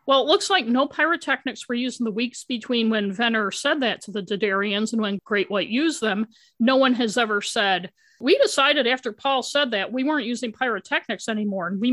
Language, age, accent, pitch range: English, 50-69, American, 210-255 Hz